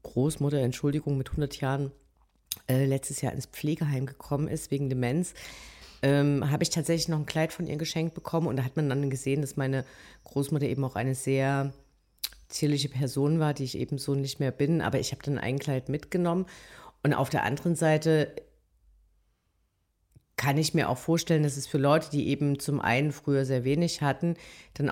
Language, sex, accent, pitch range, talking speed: German, female, German, 135-155 Hz, 190 wpm